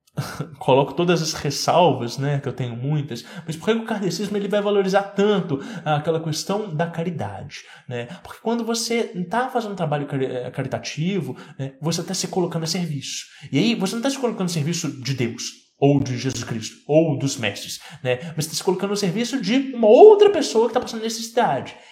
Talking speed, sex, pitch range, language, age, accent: 195 wpm, male, 145-210 Hz, English, 20-39, Brazilian